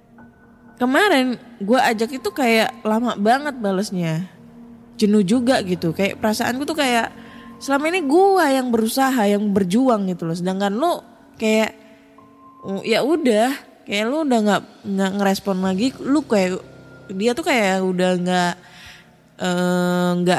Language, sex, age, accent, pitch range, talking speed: Indonesian, female, 20-39, native, 175-230 Hz, 130 wpm